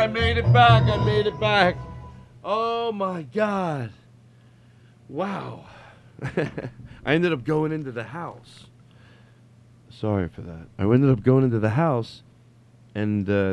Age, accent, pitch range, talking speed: 40-59, American, 100-125 Hz, 135 wpm